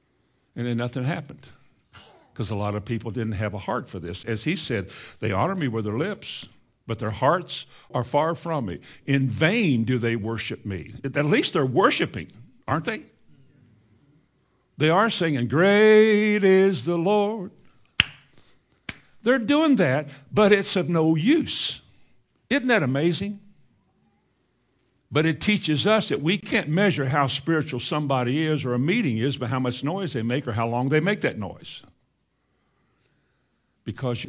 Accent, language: American, English